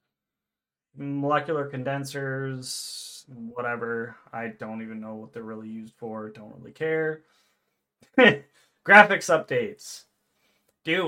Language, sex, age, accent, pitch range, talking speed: English, male, 30-49, American, 110-150 Hz, 95 wpm